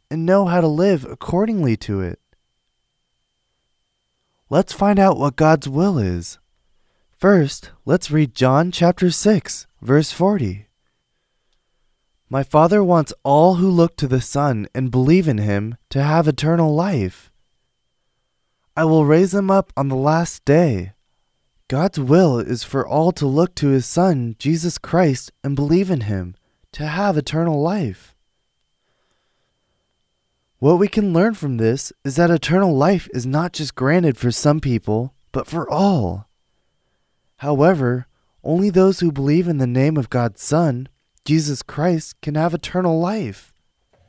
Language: Korean